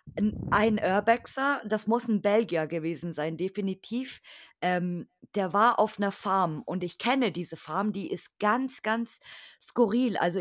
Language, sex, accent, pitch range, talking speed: German, female, German, 190-225 Hz, 150 wpm